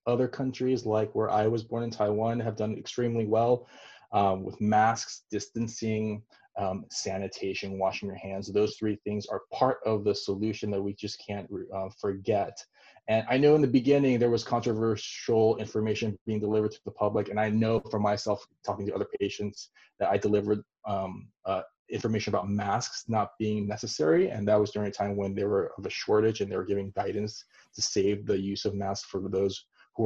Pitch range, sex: 100-115 Hz, male